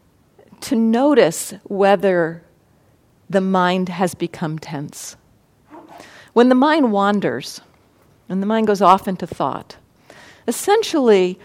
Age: 50-69